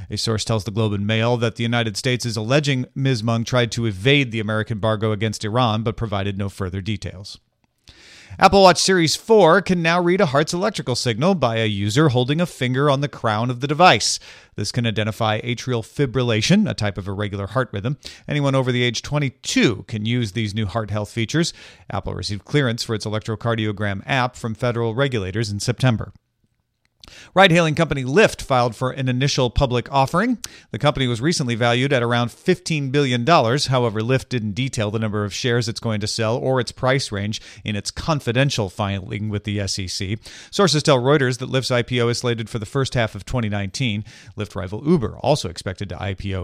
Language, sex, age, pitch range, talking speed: English, male, 40-59, 105-135 Hz, 190 wpm